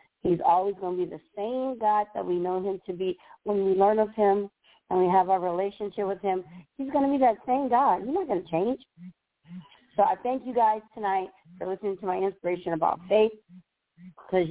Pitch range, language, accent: 180-220 Hz, English, American